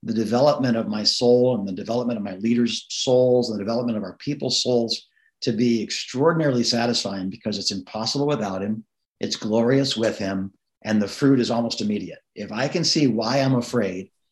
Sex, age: male, 50-69